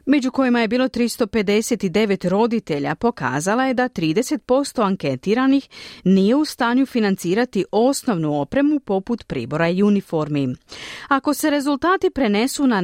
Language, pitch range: Croatian, 175-265 Hz